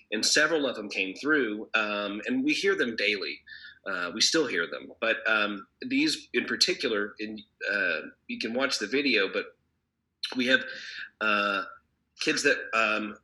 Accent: American